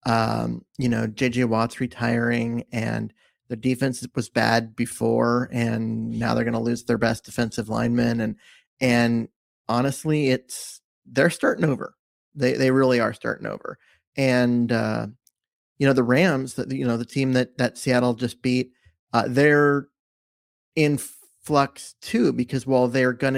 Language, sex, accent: English, male, American